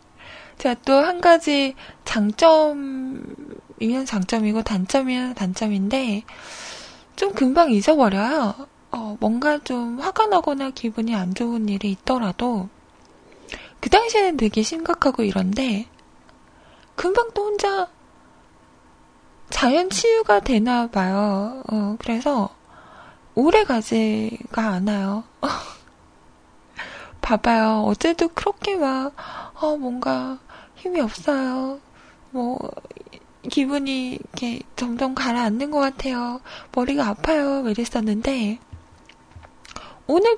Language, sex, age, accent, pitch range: Korean, female, 20-39, native, 215-295 Hz